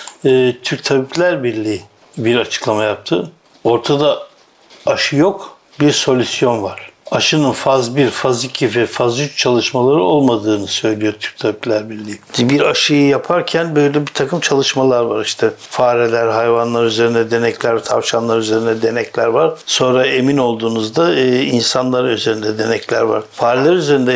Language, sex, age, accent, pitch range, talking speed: Turkish, male, 60-79, native, 115-130 Hz, 130 wpm